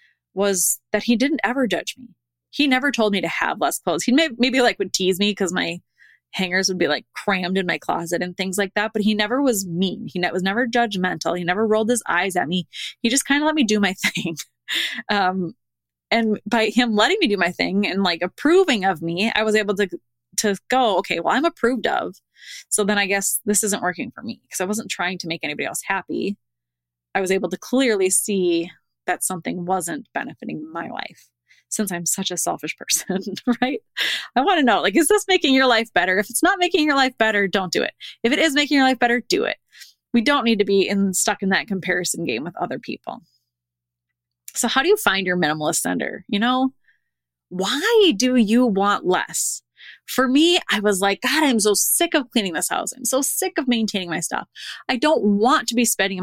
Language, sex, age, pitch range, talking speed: English, female, 20-39, 180-245 Hz, 220 wpm